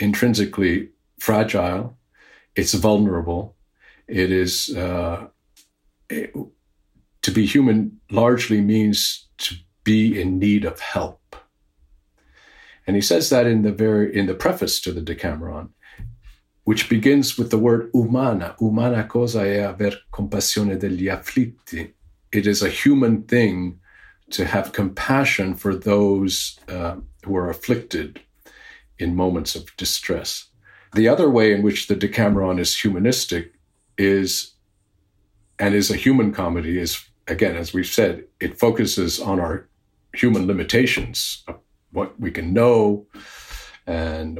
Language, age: English, 50-69